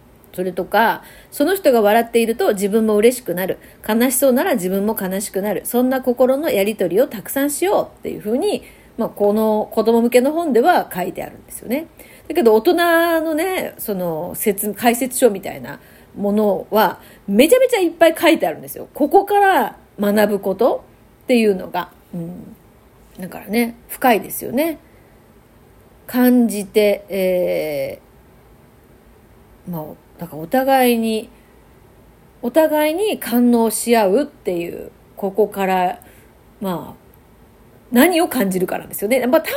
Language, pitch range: Japanese, 200-310 Hz